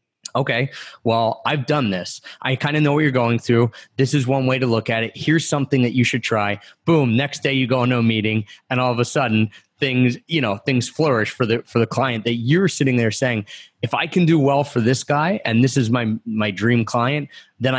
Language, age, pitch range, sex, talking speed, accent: English, 30-49, 110-135 Hz, male, 235 wpm, American